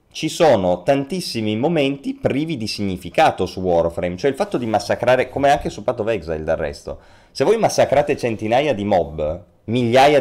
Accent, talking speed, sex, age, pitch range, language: native, 170 wpm, male, 30-49, 95-130 Hz, Italian